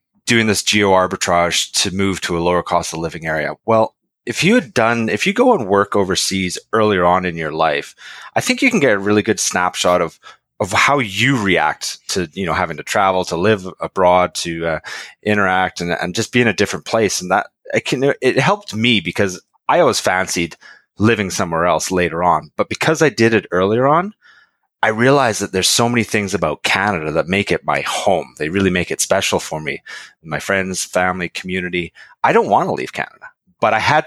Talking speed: 210 wpm